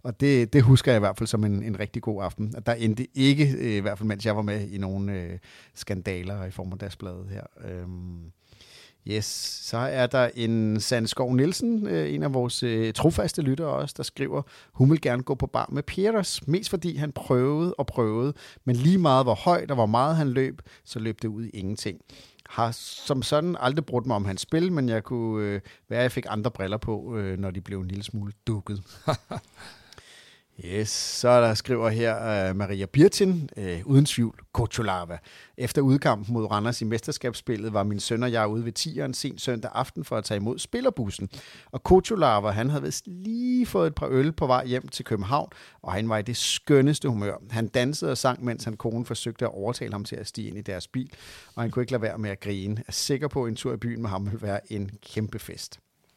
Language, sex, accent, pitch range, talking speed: Danish, male, native, 105-130 Hz, 225 wpm